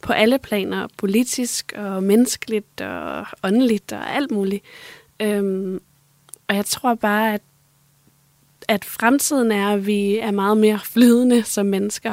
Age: 20-39